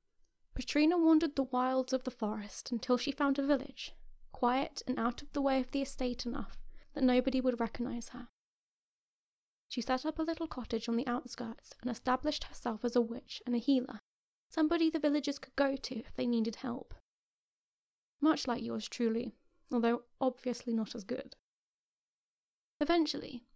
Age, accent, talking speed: 20-39, British, 165 wpm